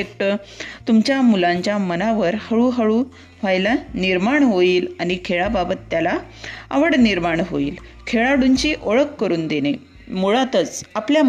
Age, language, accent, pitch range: 30-49, Marathi, native, 190-245 Hz